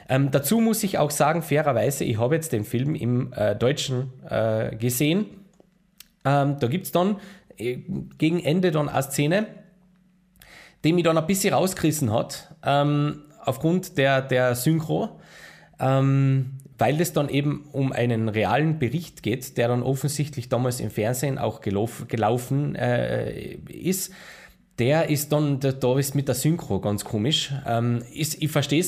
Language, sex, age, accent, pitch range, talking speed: German, male, 20-39, Austrian, 120-160 Hz, 160 wpm